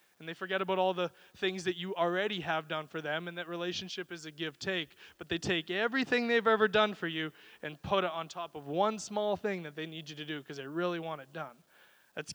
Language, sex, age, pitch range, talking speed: English, male, 20-39, 170-210 Hz, 250 wpm